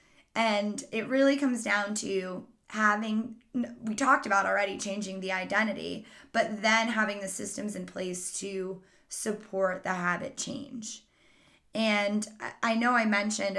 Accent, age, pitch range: American, 20-39, 200-240 Hz